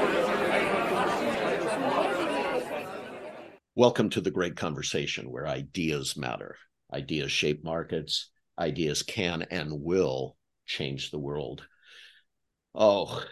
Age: 50-69